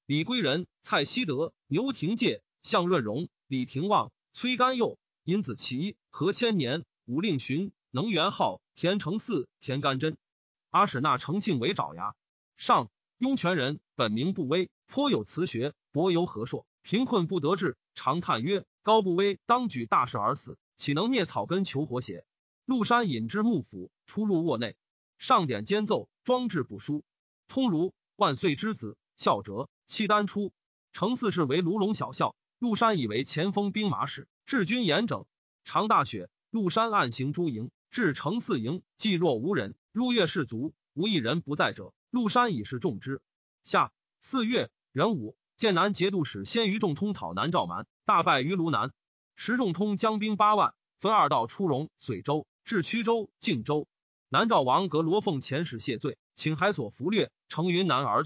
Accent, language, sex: native, Chinese, male